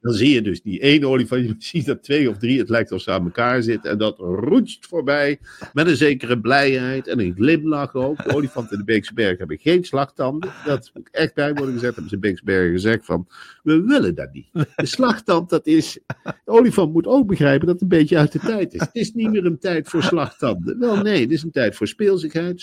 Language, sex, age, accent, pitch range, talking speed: Dutch, male, 50-69, Dutch, 130-190 Hz, 240 wpm